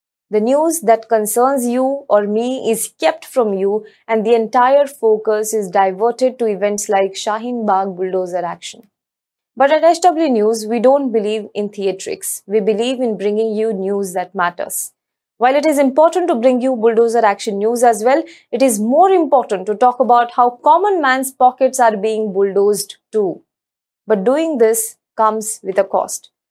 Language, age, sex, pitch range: English, 20-39, female, 205-250 Hz